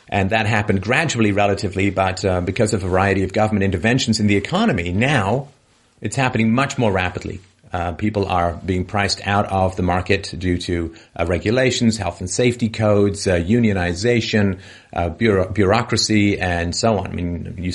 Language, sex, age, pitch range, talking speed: English, male, 40-59, 90-105 Hz, 170 wpm